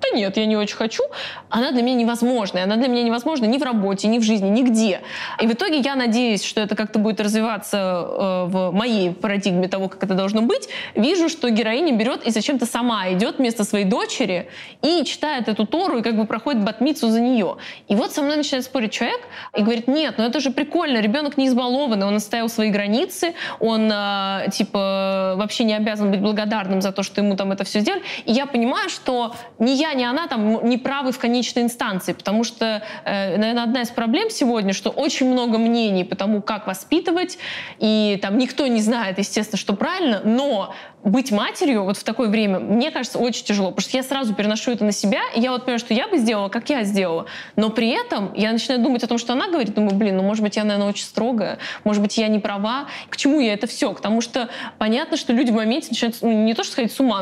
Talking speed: 220 wpm